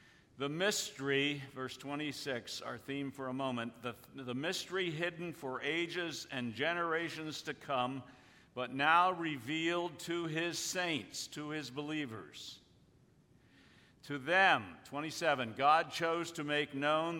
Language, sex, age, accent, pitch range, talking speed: English, male, 60-79, American, 130-170 Hz, 125 wpm